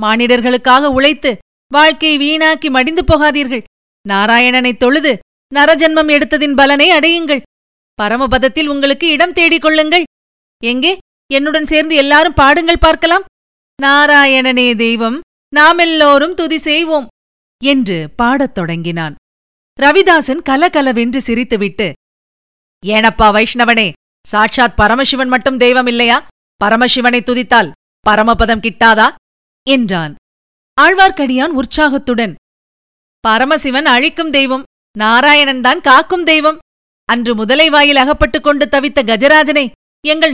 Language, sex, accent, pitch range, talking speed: Tamil, female, native, 225-295 Hz, 90 wpm